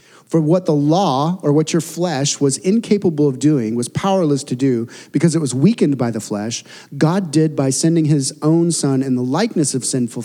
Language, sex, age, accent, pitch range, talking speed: English, male, 40-59, American, 130-165 Hz, 205 wpm